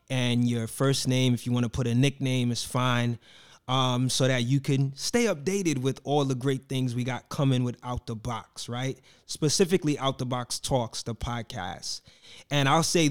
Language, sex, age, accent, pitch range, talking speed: English, male, 20-39, American, 125-150 Hz, 195 wpm